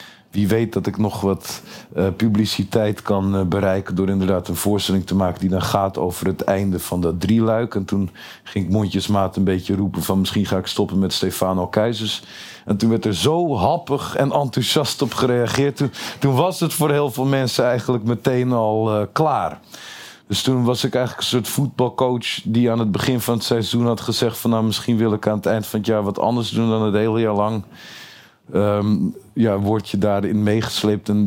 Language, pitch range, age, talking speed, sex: Dutch, 100-125 Hz, 50-69, 205 wpm, male